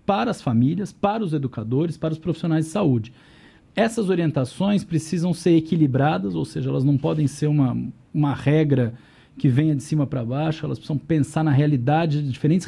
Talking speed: 180 wpm